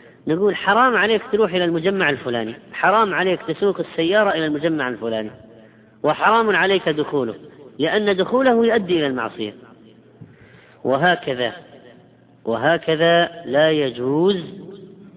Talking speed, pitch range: 105 wpm, 135-175 Hz